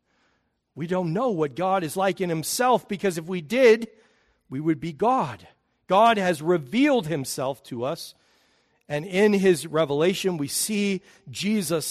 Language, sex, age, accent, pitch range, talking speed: English, male, 50-69, American, 130-195 Hz, 150 wpm